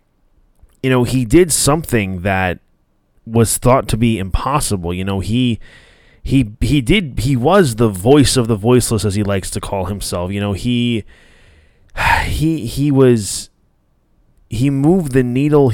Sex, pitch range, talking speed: male, 100-140 Hz, 155 wpm